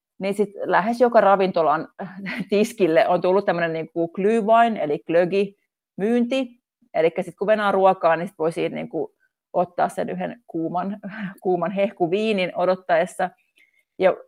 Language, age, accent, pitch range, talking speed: Finnish, 30-49, native, 175-215 Hz, 120 wpm